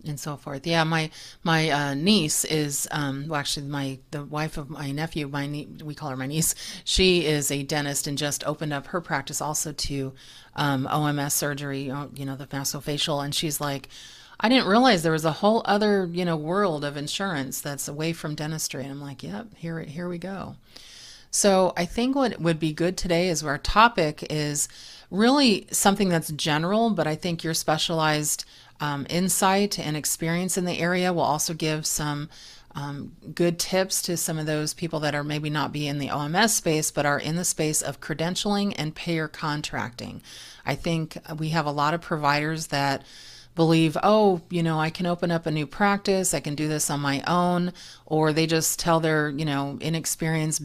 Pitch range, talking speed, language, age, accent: 145-170 Hz, 200 wpm, English, 30-49, American